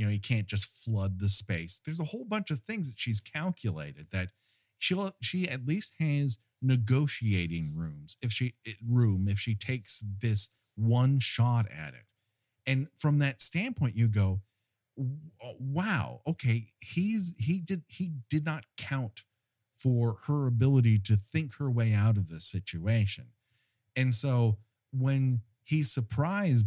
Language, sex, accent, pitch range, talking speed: English, male, American, 105-140 Hz, 150 wpm